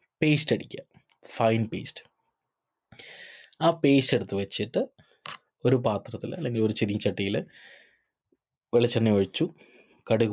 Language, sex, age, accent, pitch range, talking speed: Malayalam, male, 20-39, native, 100-125 Hz, 100 wpm